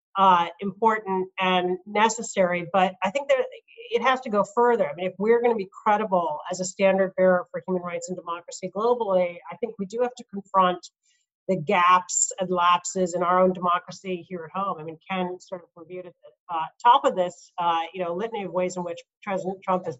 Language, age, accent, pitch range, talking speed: English, 40-59, American, 180-205 Hz, 215 wpm